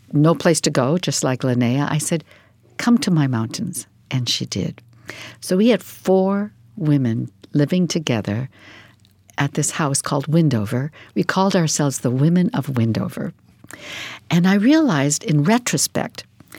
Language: English